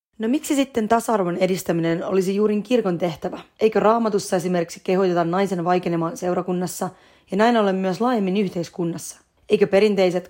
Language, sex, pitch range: Finnish, female, 180-215 Hz